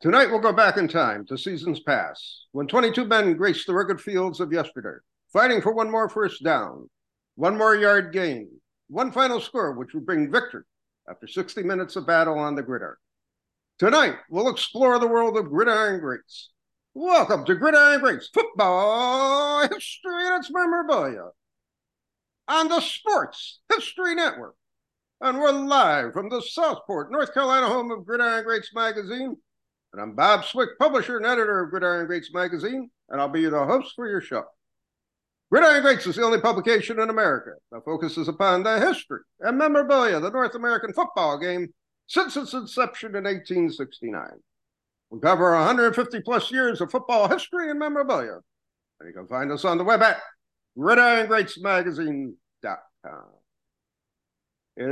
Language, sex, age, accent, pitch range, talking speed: English, male, 50-69, American, 190-280 Hz, 155 wpm